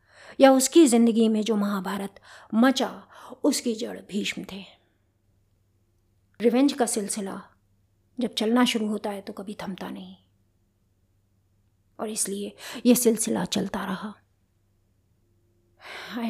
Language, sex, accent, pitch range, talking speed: Hindi, female, native, 170-230 Hz, 110 wpm